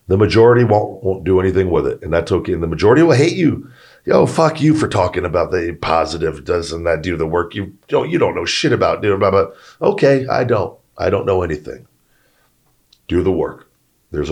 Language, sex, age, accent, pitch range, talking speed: English, male, 40-59, American, 85-110 Hz, 205 wpm